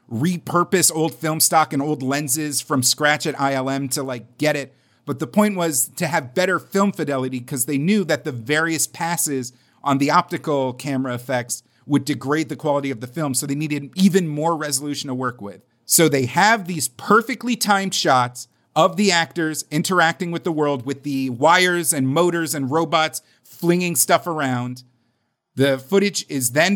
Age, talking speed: 40-59, 180 wpm